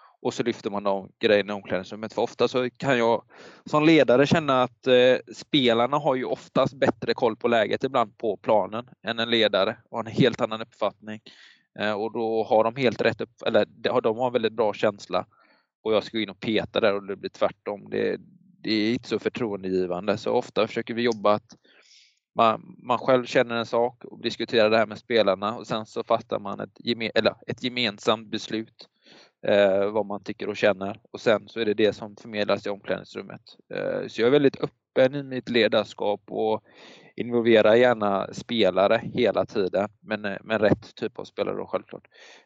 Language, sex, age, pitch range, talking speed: Swedish, male, 20-39, 100-120 Hz, 185 wpm